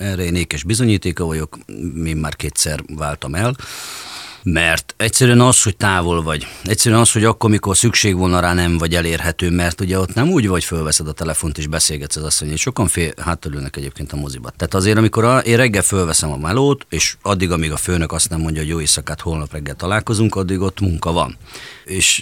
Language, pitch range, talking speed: Hungarian, 80-100 Hz, 205 wpm